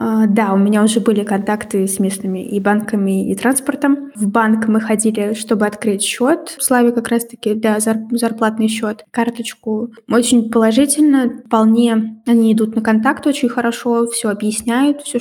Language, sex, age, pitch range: Russian, female, 20-39, 215-245 Hz